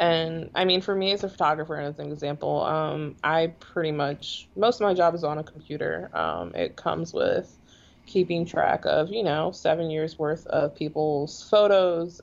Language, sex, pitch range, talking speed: English, female, 150-170 Hz, 190 wpm